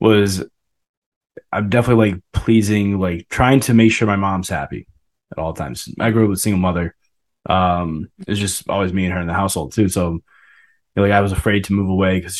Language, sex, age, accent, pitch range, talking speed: English, male, 20-39, American, 90-115 Hz, 220 wpm